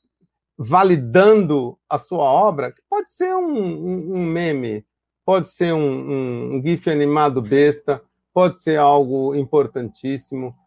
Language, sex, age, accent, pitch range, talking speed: Portuguese, male, 50-69, Brazilian, 140-195 Hz, 130 wpm